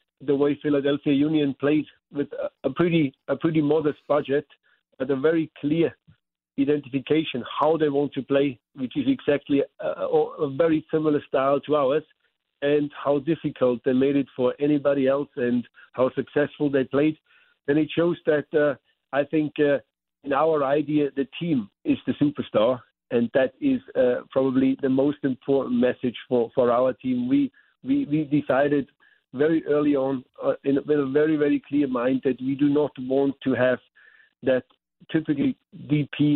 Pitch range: 135-155 Hz